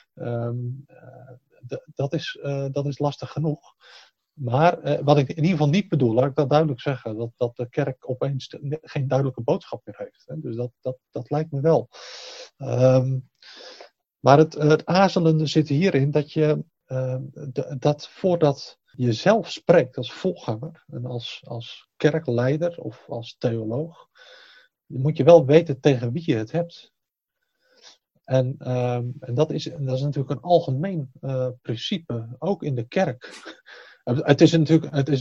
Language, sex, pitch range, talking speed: Dutch, male, 125-155 Hz, 150 wpm